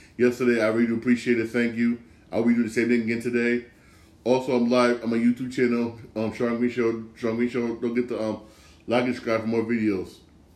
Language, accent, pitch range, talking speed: English, American, 105-120 Hz, 235 wpm